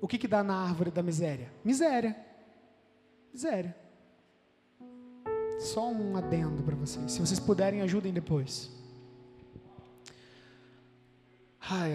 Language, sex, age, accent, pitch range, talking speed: Portuguese, male, 20-39, Brazilian, 145-220 Hz, 105 wpm